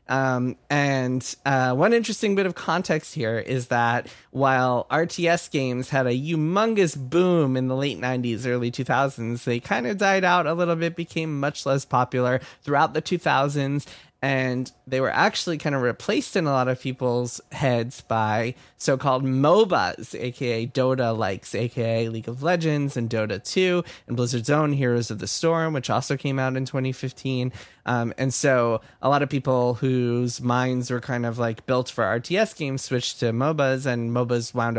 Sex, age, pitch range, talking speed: male, 20-39, 115-145 Hz, 170 wpm